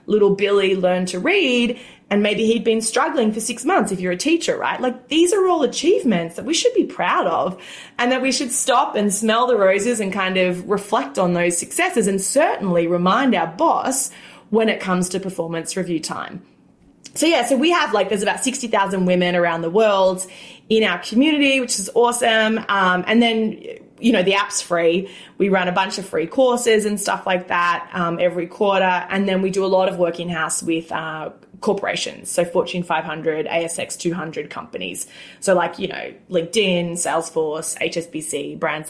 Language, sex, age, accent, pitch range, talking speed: English, female, 20-39, Australian, 175-240 Hz, 190 wpm